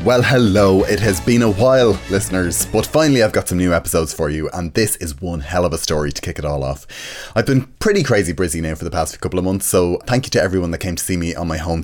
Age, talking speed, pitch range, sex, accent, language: 20-39, 280 wpm, 85-110 Hz, male, Irish, English